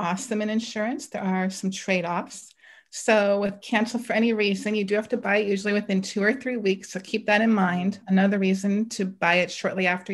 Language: English